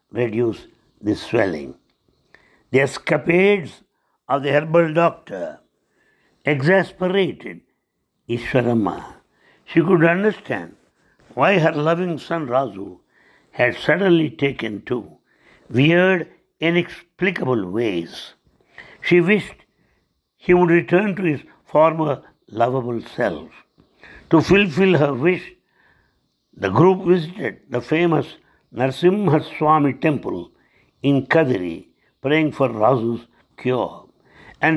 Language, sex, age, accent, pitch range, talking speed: English, male, 60-79, Indian, 130-175 Hz, 95 wpm